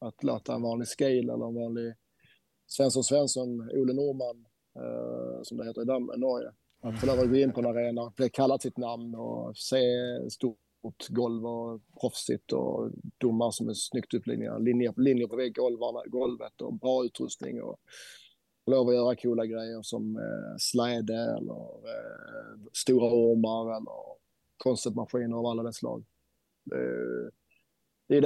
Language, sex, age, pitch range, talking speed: Swedish, male, 20-39, 115-130 Hz, 155 wpm